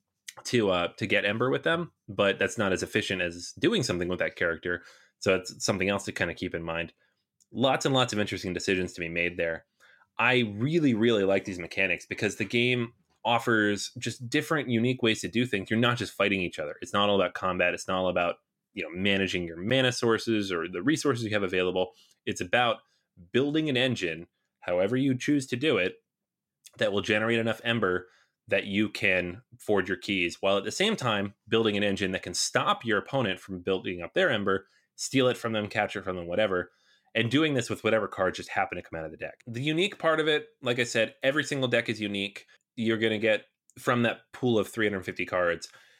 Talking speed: 220 wpm